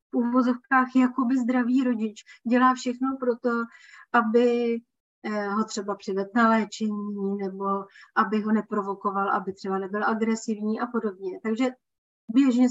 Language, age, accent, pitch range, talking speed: Czech, 30-49, native, 225-260 Hz, 130 wpm